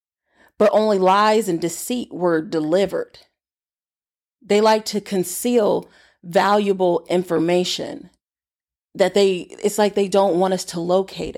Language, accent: English, American